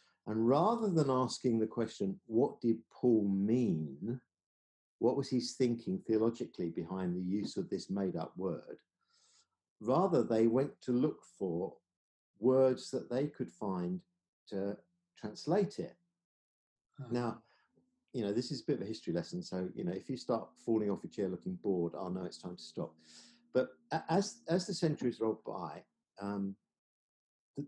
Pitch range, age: 100-150 Hz, 50-69